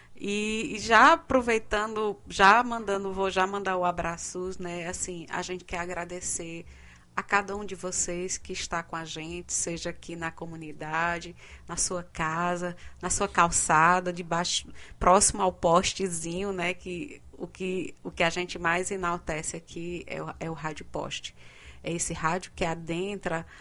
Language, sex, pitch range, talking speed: Portuguese, female, 170-200 Hz, 160 wpm